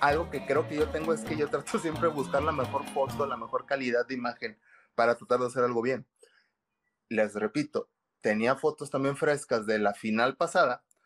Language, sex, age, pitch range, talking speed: English, male, 30-49, 125-165 Hz, 200 wpm